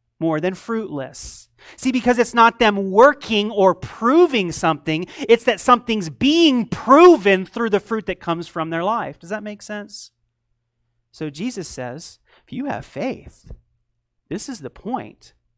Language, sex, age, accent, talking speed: English, male, 30-49, American, 155 wpm